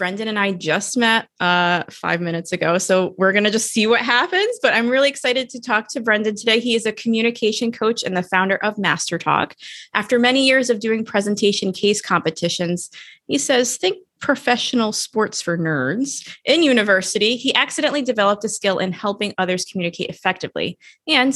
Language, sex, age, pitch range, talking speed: English, female, 20-39, 190-250 Hz, 180 wpm